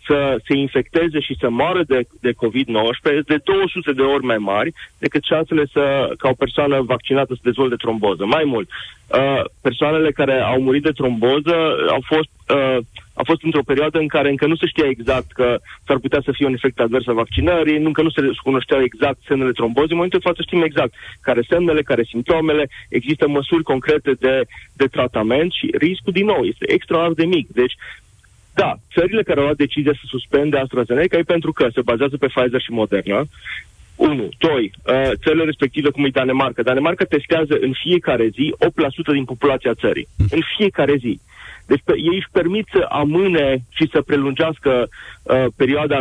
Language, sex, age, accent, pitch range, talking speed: Romanian, male, 30-49, native, 130-160 Hz, 175 wpm